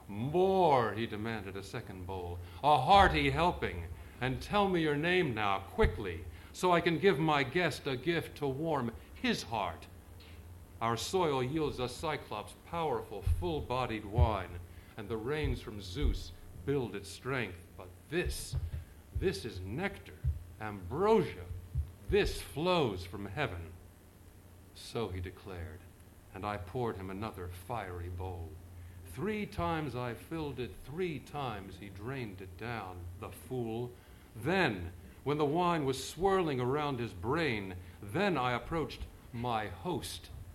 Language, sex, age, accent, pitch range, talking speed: English, male, 50-69, American, 90-150 Hz, 135 wpm